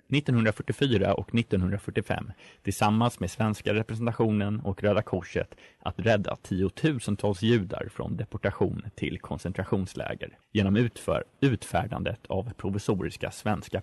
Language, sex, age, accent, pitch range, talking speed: Swedish, male, 30-49, native, 100-120 Hz, 105 wpm